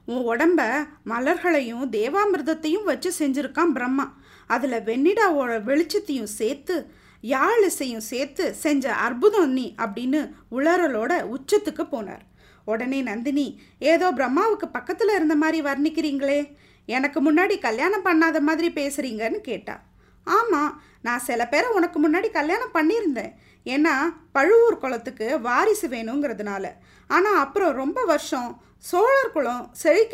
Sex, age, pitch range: female, 20-39, 255-350 Hz